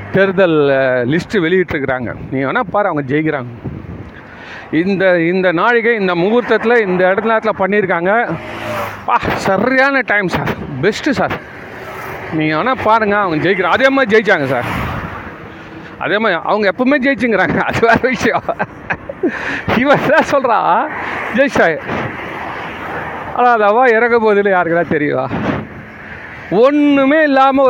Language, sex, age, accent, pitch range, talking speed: Tamil, male, 40-59, native, 180-245 Hz, 105 wpm